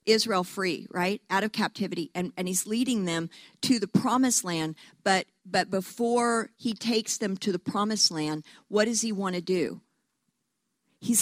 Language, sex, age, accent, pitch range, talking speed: English, female, 50-69, American, 200-260 Hz, 170 wpm